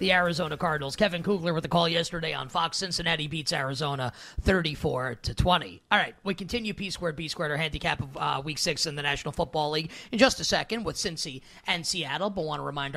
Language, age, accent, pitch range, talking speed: English, 30-49, American, 150-185 Hz, 215 wpm